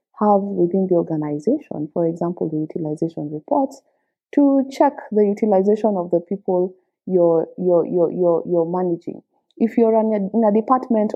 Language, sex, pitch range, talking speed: English, female, 175-225 Hz, 140 wpm